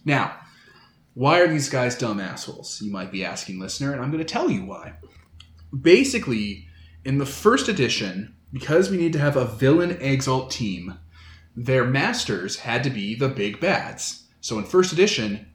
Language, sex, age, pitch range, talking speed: English, male, 30-49, 120-160 Hz, 175 wpm